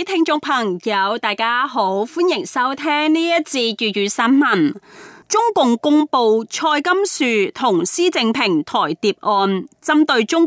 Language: Chinese